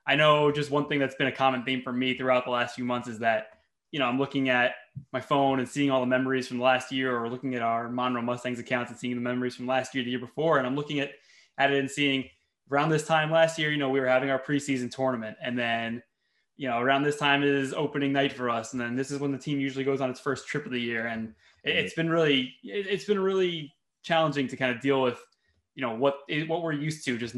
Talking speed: 265 wpm